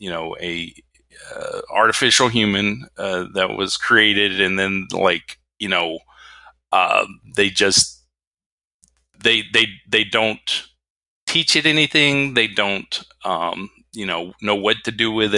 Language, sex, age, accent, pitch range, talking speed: English, male, 40-59, American, 85-110 Hz, 135 wpm